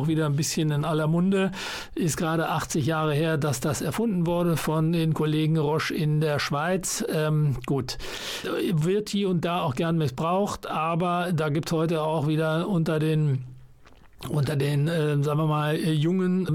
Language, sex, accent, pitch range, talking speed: German, male, German, 145-165 Hz, 170 wpm